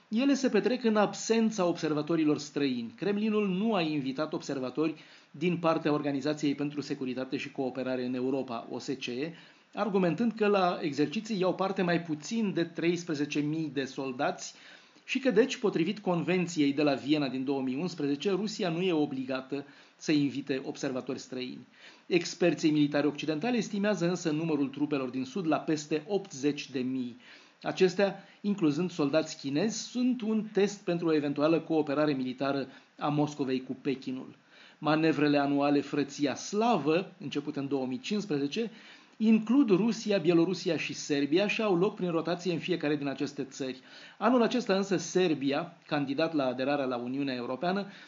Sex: male